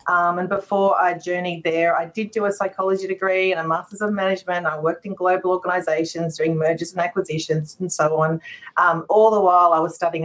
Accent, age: Australian, 40-59